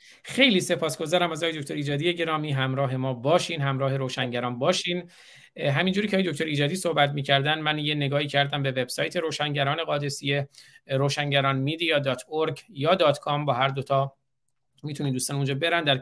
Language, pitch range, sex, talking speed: Persian, 130-150 Hz, male, 155 wpm